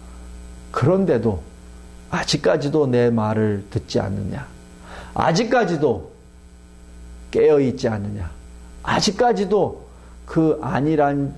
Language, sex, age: Korean, male, 50-69